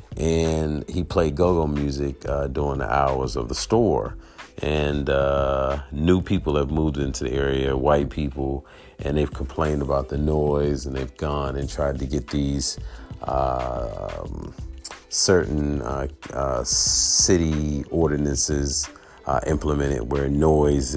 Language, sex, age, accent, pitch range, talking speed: English, male, 40-59, American, 70-85 Hz, 135 wpm